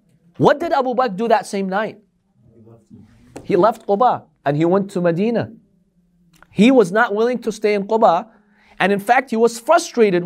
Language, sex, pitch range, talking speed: English, male, 155-230 Hz, 175 wpm